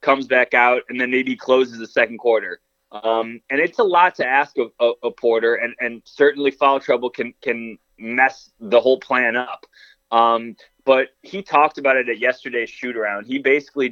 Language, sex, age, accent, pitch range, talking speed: English, male, 20-39, American, 120-145 Hz, 195 wpm